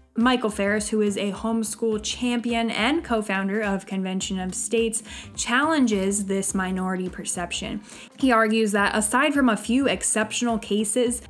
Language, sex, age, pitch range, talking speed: English, female, 10-29, 200-240 Hz, 140 wpm